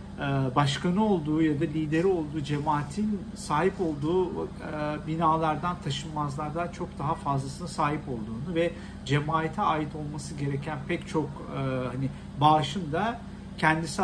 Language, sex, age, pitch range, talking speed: Turkish, male, 50-69, 145-195 Hz, 115 wpm